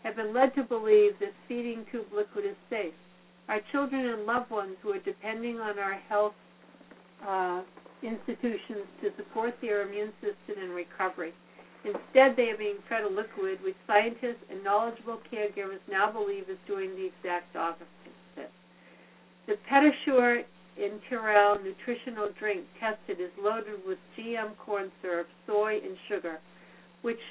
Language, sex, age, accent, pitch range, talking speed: English, female, 60-79, American, 195-240 Hz, 145 wpm